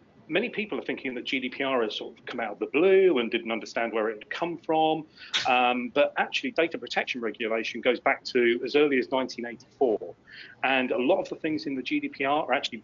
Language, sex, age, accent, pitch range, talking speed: English, male, 30-49, British, 110-140 Hz, 215 wpm